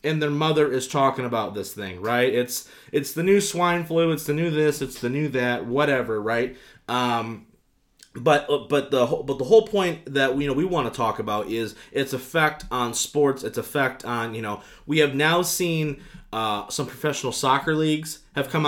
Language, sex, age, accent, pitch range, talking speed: English, male, 30-49, American, 120-145 Hz, 200 wpm